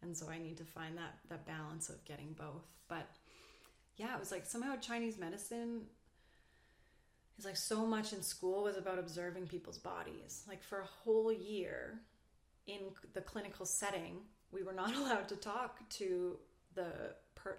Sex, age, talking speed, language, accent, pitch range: female, 30-49, 165 wpm, English, American, 180-220 Hz